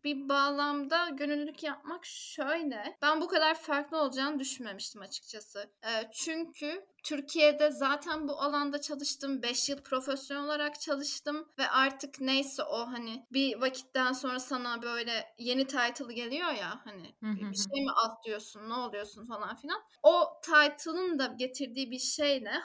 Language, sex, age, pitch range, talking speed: Turkish, female, 10-29, 240-295 Hz, 140 wpm